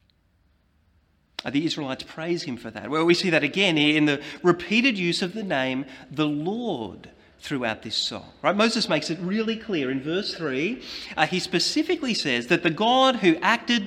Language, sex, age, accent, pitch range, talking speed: English, male, 40-59, Australian, 135-225 Hz, 180 wpm